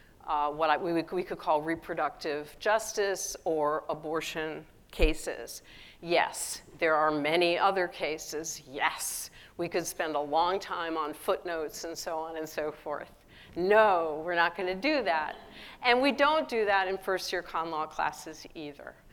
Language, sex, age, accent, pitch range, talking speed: English, female, 50-69, American, 160-200 Hz, 155 wpm